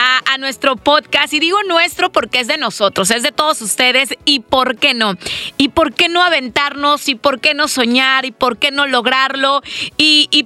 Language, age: Spanish, 30-49